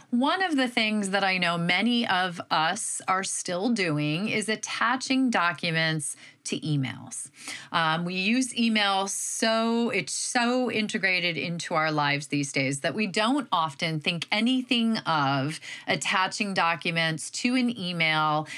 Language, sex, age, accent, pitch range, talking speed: English, female, 30-49, American, 160-225 Hz, 140 wpm